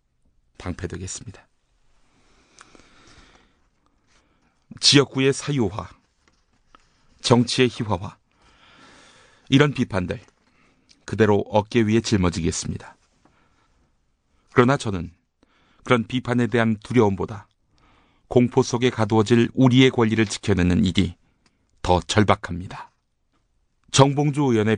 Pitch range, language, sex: 80-120 Hz, Korean, male